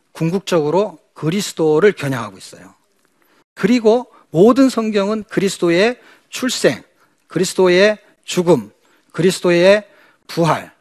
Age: 40-59